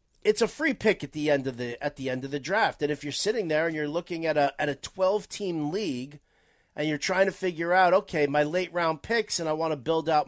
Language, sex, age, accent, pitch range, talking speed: English, male, 40-59, American, 140-185 Hz, 275 wpm